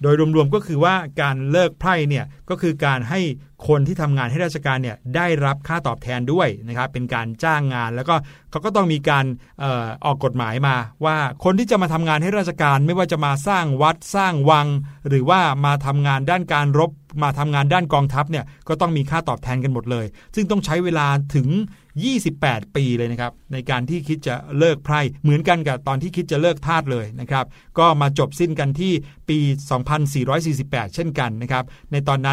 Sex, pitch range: male, 135-160 Hz